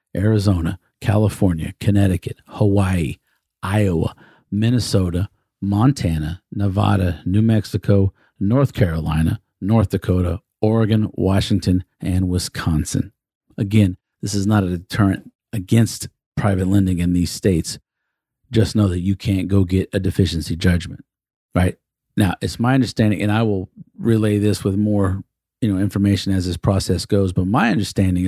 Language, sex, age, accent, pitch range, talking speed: English, male, 40-59, American, 90-105 Hz, 130 wpm